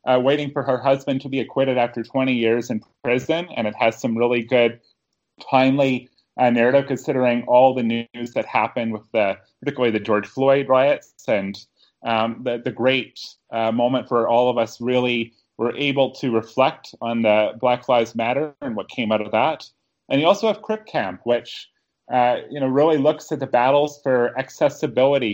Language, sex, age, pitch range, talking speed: English, male, 30-49, 115-140 Hz, 185 wpm